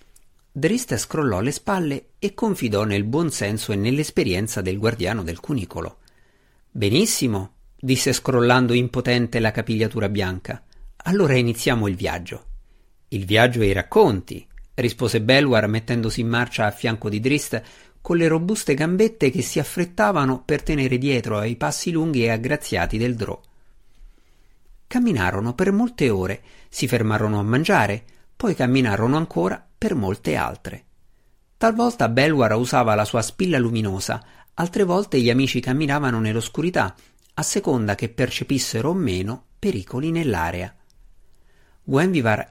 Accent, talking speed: native, 130 wpm